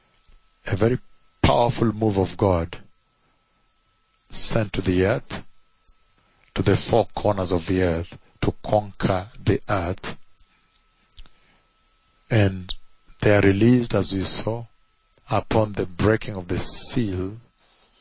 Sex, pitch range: male, 95-110 Hz